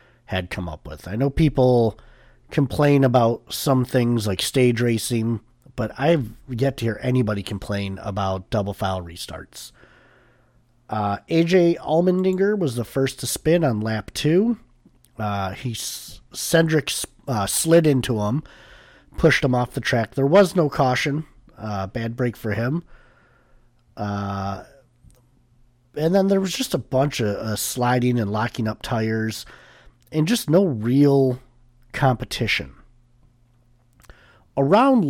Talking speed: 135 wpm